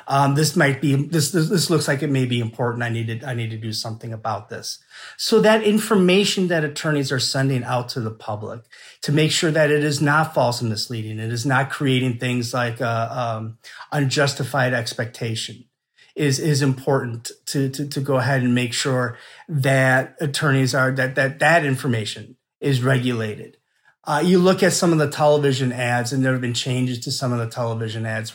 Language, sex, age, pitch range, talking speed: English, male, 30-49, 125-155 Hz, 200 wpm